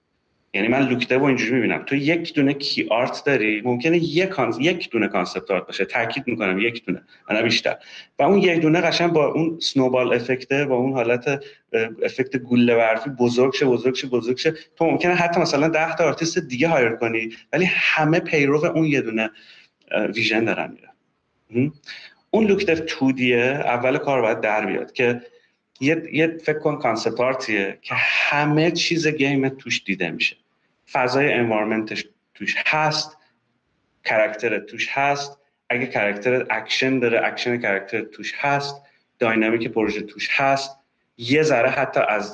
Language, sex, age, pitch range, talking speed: Persian, male, 30-49, 115-155 Hz, 155 wpm